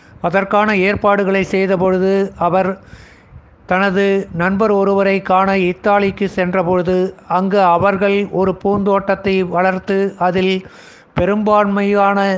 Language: Tamil